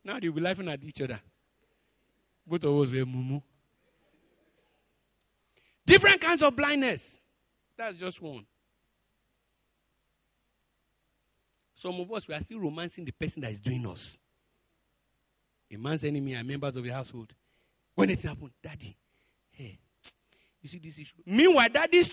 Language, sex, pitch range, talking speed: English, male, 125-205 Hz, 140 wpm